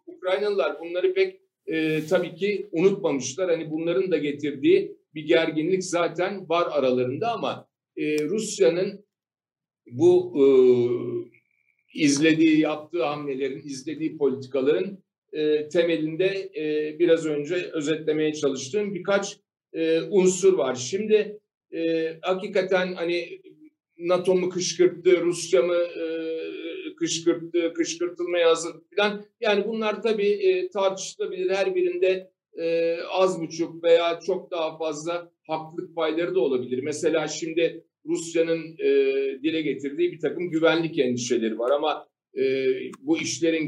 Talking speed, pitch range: 115 wpm, 160-210 Hz